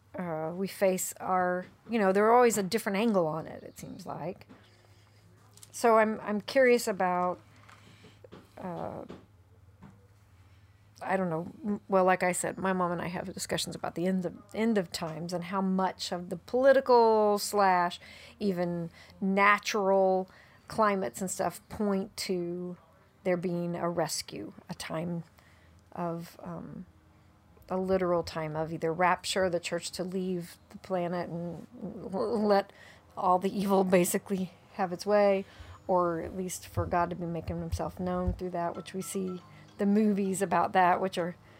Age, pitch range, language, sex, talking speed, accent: 40-59, 170-205 Hz, English, female, 155 wpm, American